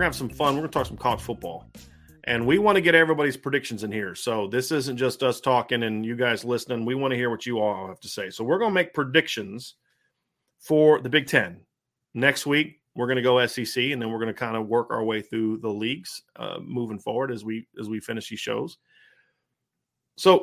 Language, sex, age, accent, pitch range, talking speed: English, male, 30-49, American, 120-155 Hz, 225 wpm